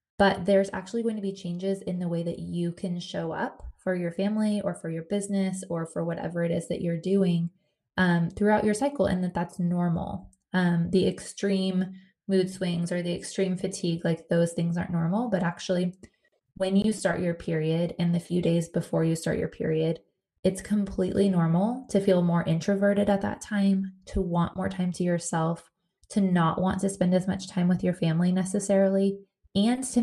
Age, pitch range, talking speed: 20-39, 170-195 Hz, 195 wpm